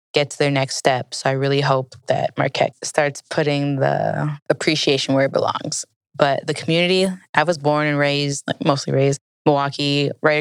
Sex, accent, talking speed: female, American, 180 wpm